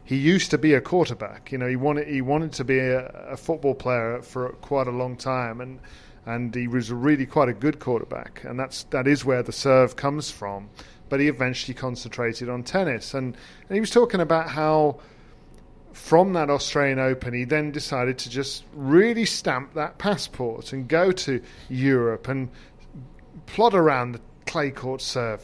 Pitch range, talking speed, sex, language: 125-150 Hz, 185 wpm, male, English